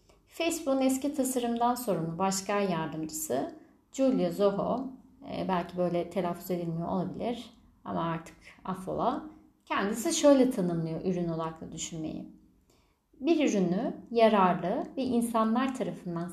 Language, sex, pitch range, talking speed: Turkish, female, 185-270 Hz, 105 wpm